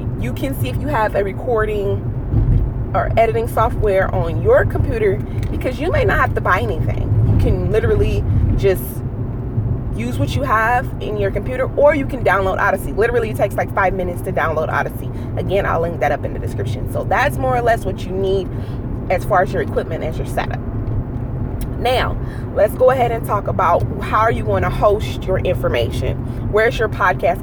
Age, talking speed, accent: 30-49, 195 wpm, American